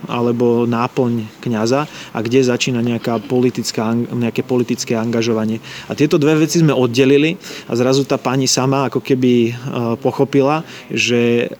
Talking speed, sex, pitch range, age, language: 125 wpm, male, 115-135 Hz, 20-39, Slovak